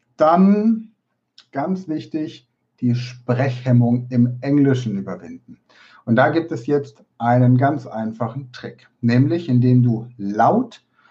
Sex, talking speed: male, 115 wpm